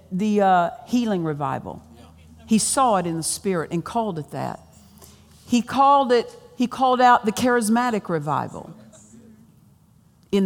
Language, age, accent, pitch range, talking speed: English, 50-69, American, 180-240 Hz, 140 wpm